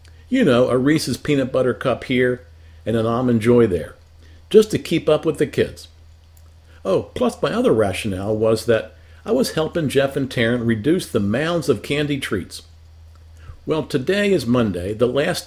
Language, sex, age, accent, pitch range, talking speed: English, male, 50-69, American, 85-140 Hz, 175 wpm